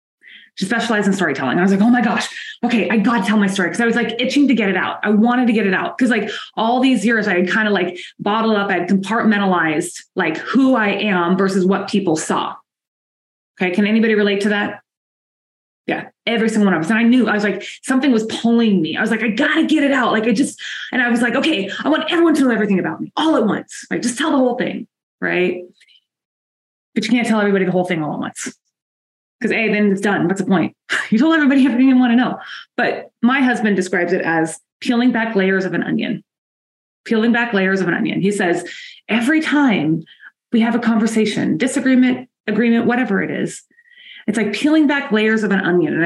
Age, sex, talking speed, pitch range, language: 20-39, female, 235 wpm, 185-245 Hz, English